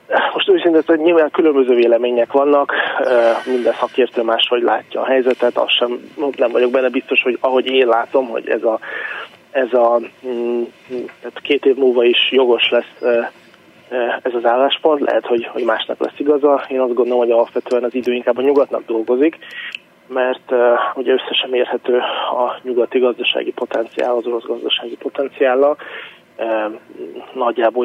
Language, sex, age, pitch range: Hungarian, male, 20-39, 120-140 Hz